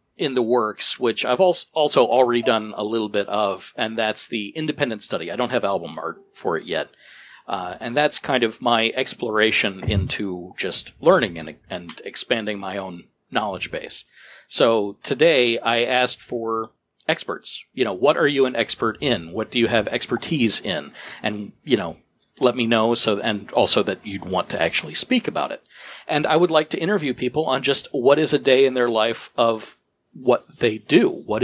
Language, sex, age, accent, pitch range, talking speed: English, male, 50-69, American, 115-165 Hz, 190 wpm